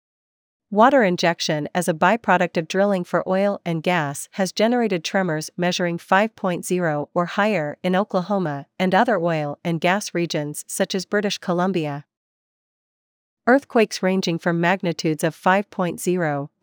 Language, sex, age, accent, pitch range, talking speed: English, female, 40-59, American, 165-200 Hz, 130 wpm